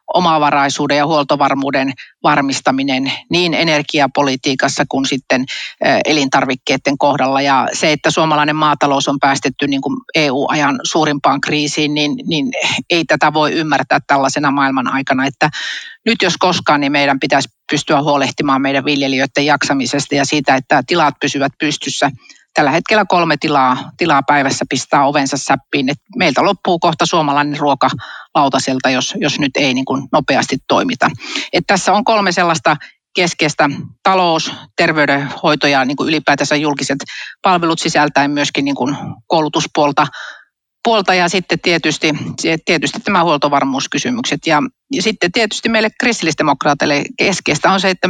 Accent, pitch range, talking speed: native, 140-170 Hz, 135 wpm